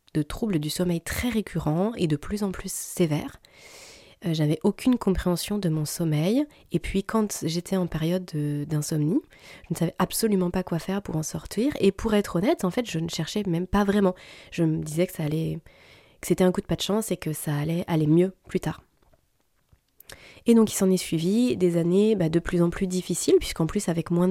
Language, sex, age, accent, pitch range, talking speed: French, female, 20-39, French, 165-200 Hz, 220 wpm